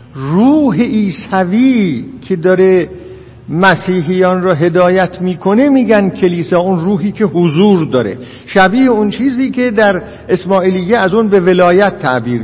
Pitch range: 135-205 Hz